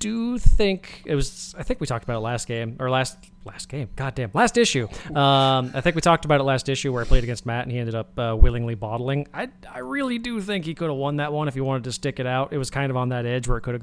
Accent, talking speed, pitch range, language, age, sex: American, 300 wpm, 120-150 Hz, English, 20-39, male